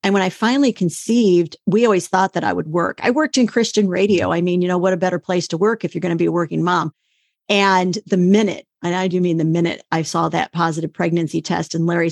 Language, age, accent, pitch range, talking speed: English, 50-69, American, 170-205 Hz, 255 wpm